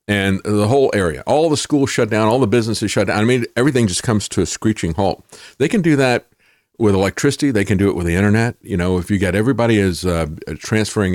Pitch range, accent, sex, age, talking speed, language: 95-115 Hz, American, male, 50-69, 240 wpm, English